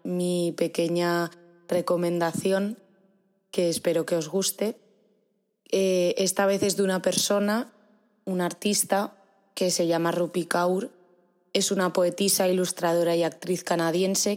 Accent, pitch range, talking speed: Spanish, 170-190 Hz, 120 wpm